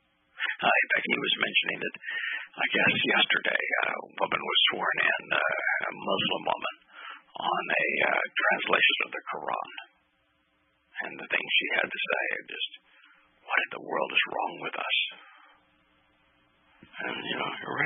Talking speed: 155 wpm